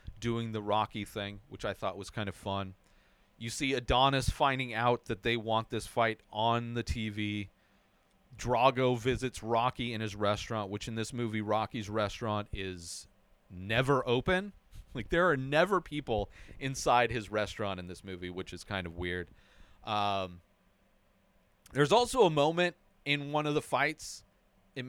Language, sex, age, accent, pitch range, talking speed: English, male, 40-59, American, 105-145 Hz, 160 wpm